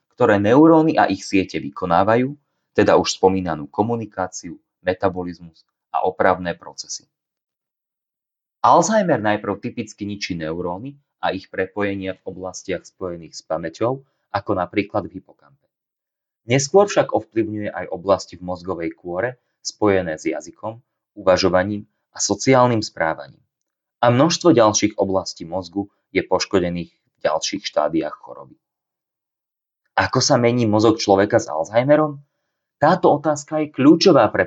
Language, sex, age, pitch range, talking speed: Slovak, male, 30-49, 95-115 Hz, 120 wpm